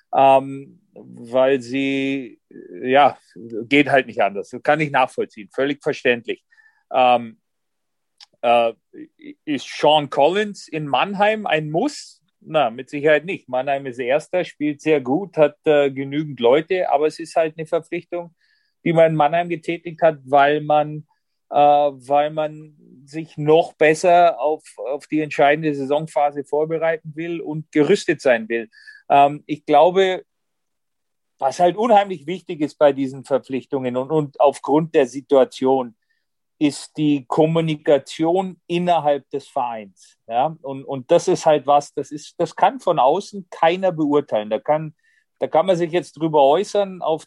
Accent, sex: German, male